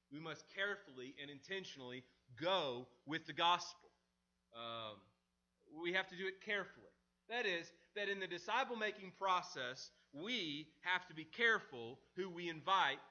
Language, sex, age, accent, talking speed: English, male, 30-49, American, 140 wpm